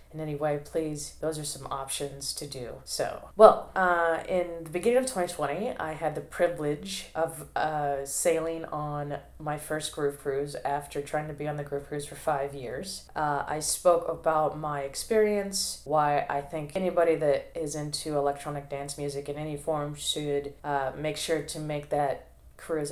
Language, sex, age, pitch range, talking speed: English, female, 20-39, 145-165 Hz, 180 wpm